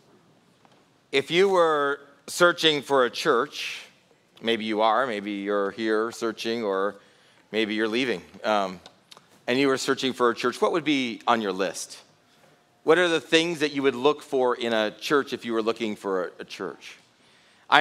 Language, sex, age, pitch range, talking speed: English, male, 40-59, 110-140 Hz, 180 wpm